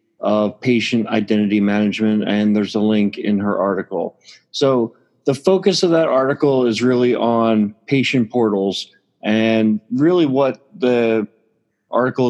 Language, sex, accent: English, male, American